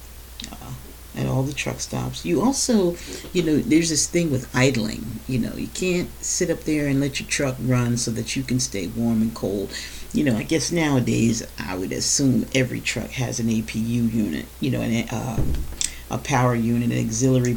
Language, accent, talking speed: English, American, 195 wpm